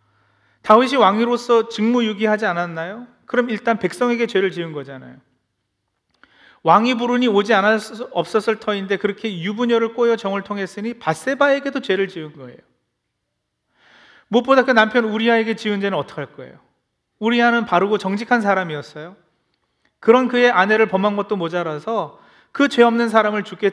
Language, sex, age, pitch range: Korean, male, 40-59, 145-230 Hz